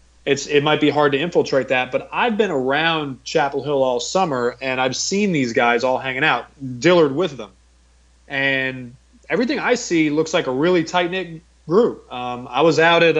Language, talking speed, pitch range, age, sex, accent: English, 190 wpm, 130-155 Hz, 30-49, male, American